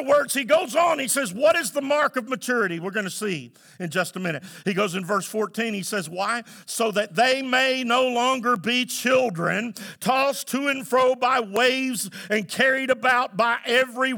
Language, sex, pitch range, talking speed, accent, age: English, male, 225-275 Hz, 200 wpm, American, 50-69